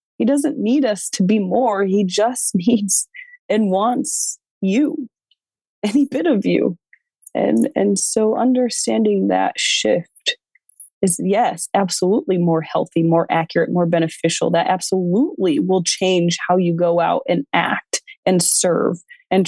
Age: 20-39